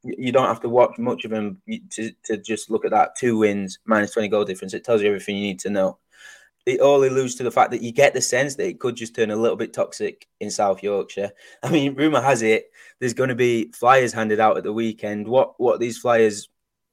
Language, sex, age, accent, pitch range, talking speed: English, male, 20-39, British, 110-135 Hz, 250 wpm